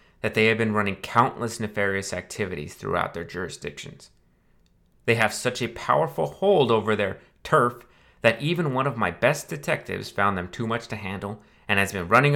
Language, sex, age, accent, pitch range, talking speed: English, male, 30-49, American, 95-120 Hz, 180 wpm